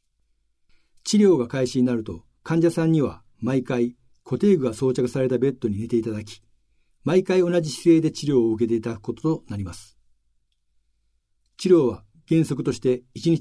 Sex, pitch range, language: male, 100-155 Hz, Japanese